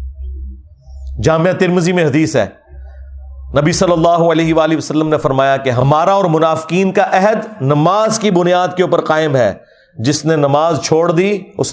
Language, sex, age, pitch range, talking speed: Urdu, male, 40-59, 130-195 Hz, 165 wpm